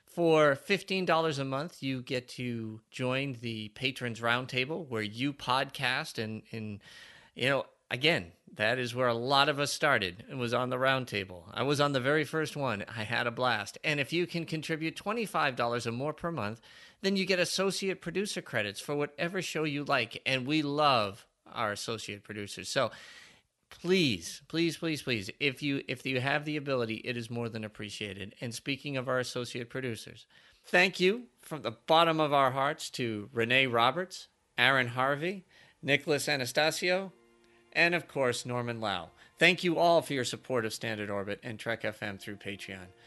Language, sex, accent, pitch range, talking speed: English, male, American, 120-160 Hz, 175 wpm